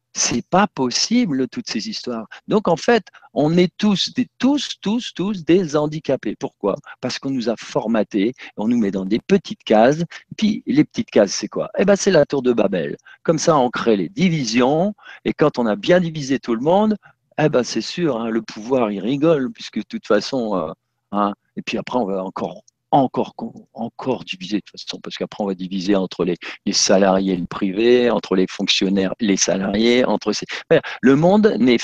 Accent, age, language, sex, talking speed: French, 50-69, French, male, 205 wpm